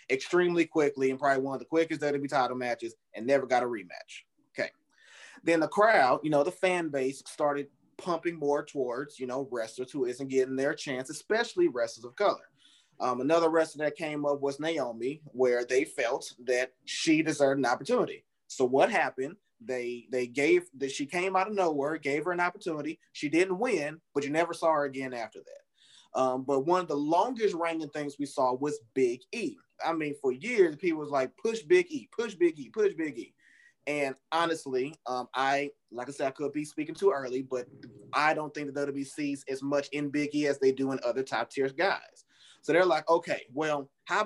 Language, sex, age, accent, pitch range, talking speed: English, male, 20-39, American, 135-175 Hz, 205 wpm